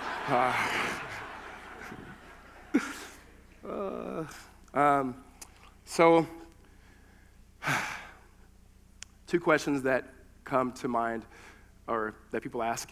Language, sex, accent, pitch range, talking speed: English, male, American, 100-125 Hz, 65 wpm